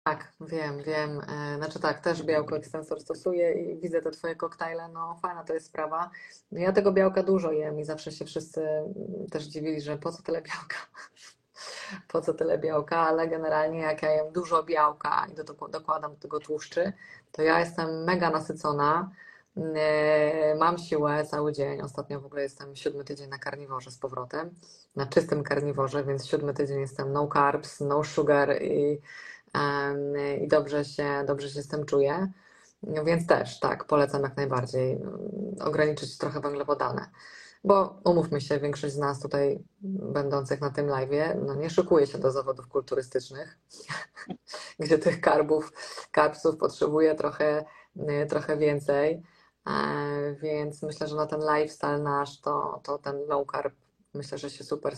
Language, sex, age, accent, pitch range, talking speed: Polish, female, 20-39, native, 145-165 Hz, 155 wpm